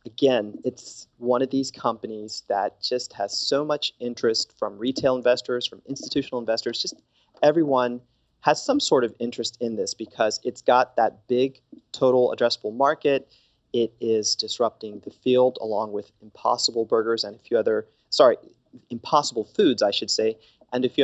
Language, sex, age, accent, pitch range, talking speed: English, male, 30-49, American, 115-135 Hz, 165 wpm